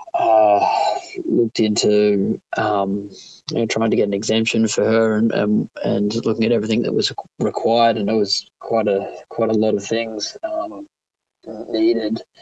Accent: Australian